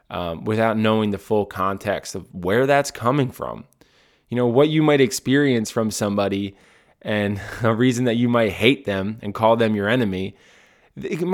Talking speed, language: 175 wpm, English